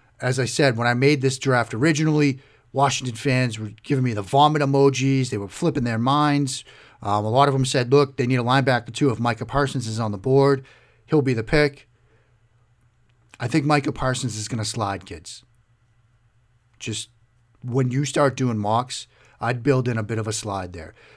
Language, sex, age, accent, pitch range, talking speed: English, male, 40-59, American, 115-145 Hz, 195 wpm